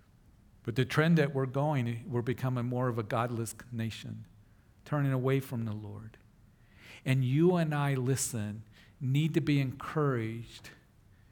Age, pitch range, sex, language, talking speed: 50-69, 110-130 Hz, male, English, 145 wpm